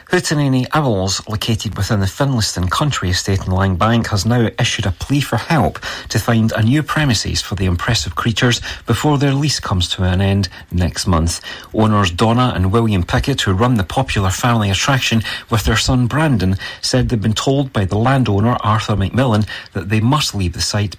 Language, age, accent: English, 40-59, British